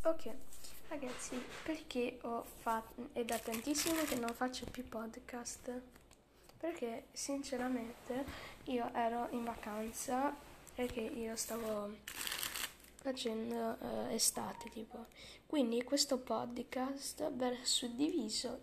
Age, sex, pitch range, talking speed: 10-29, female, 225-255 Hz, 100 wpm